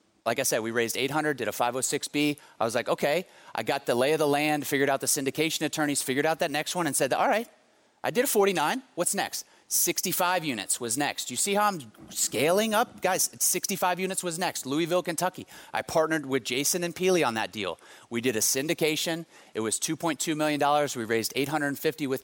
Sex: male